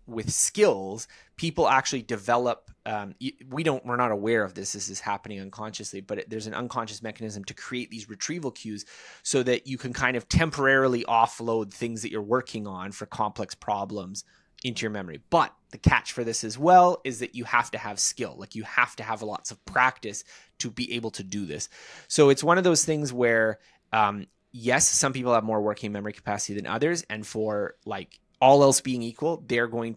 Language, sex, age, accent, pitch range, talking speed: English, male, 20-39, American, 105-130 Hz, 200 wpm